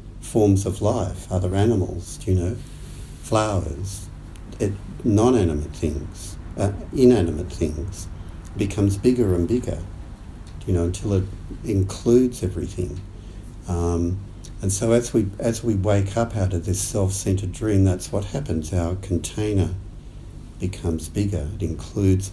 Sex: male